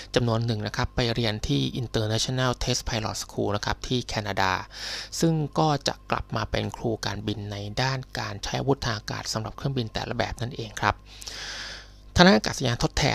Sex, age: male, 20-39